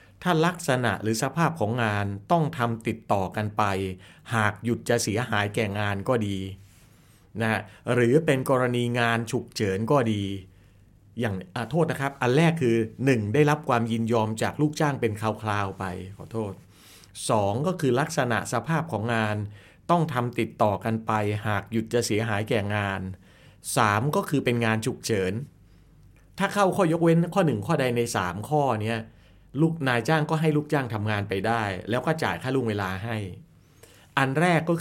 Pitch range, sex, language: 105-140 Hz, male, Thai